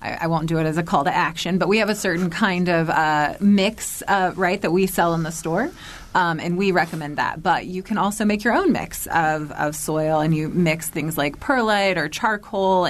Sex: female